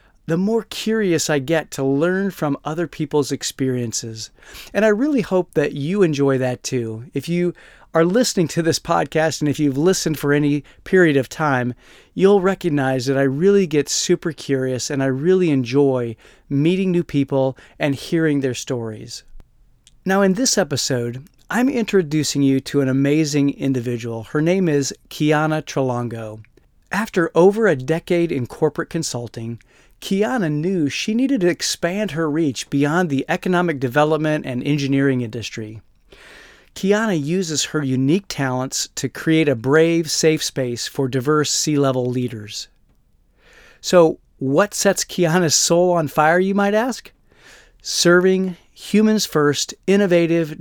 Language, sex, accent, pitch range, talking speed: English, male, American, 135-175 Hz, 145 wpm